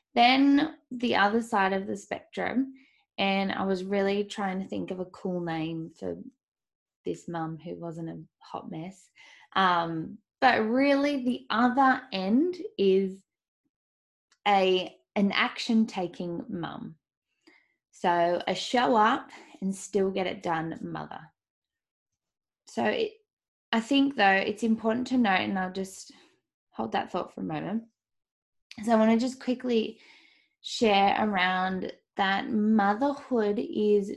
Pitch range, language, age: 190-255 Hz, English, 10-29